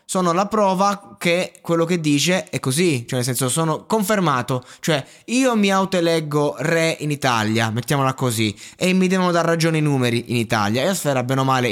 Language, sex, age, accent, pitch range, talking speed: Italian, male, 20-39, native, 120-175 Hz, 200 wpm